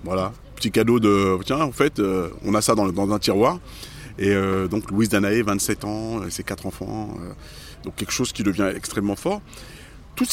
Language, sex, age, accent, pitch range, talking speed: French, male, 30-49, French, 95-115 Hz, 205 wpm